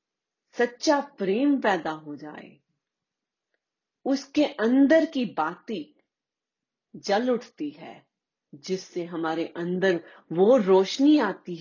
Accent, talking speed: native, 95 wpm